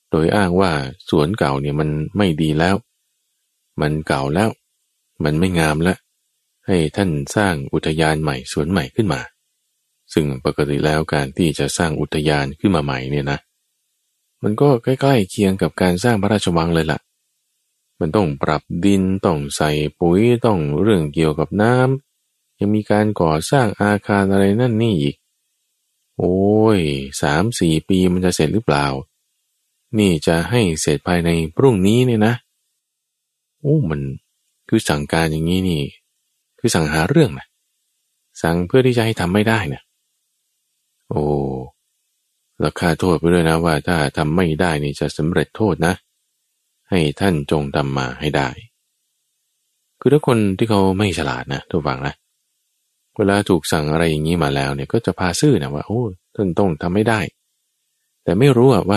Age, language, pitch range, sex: 20-39, Thai, 75-105 Hz, male